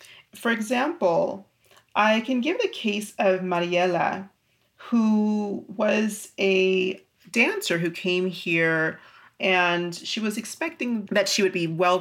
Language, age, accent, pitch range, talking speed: English, 40-59, American, 180-230 Hz, 125 wpm